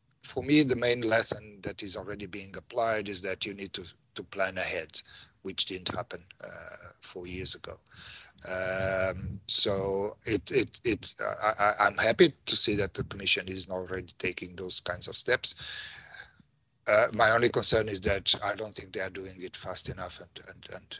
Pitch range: 95-110 Hz